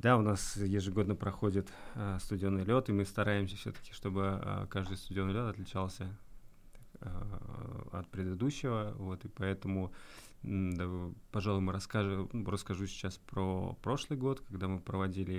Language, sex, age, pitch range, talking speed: Russian, male, 20-39, 95-110 Hz, 145 wpm